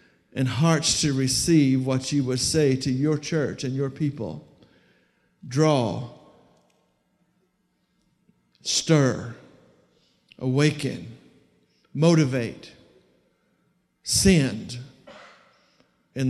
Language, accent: English, American